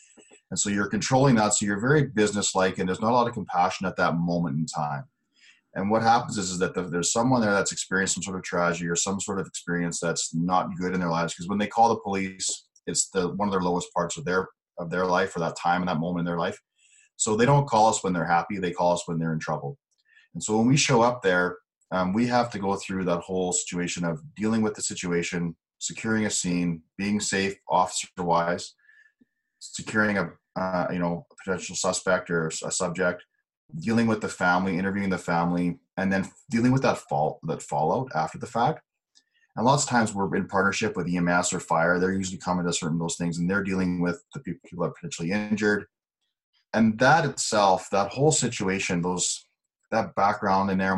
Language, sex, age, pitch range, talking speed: English, male, 30-49, 85-110 Hz, 220 wpm